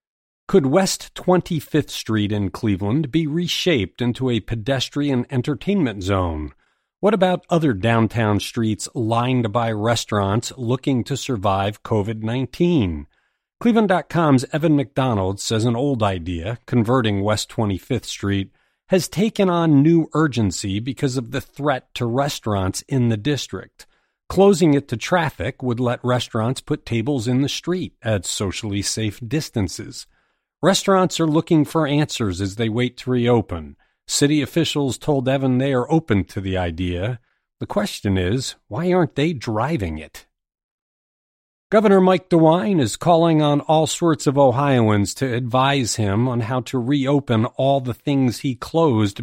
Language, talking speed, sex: English, 140 wpm, male